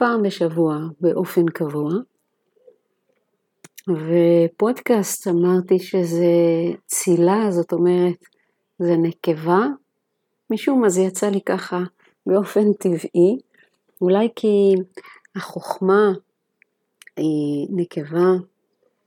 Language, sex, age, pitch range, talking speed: Hebrew, female, 40-59, 170-205 Hz, 80 wpm